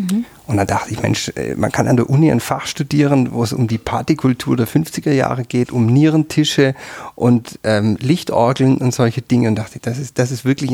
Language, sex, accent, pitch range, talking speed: German, male, German, 110-130 Hz, 220 wpm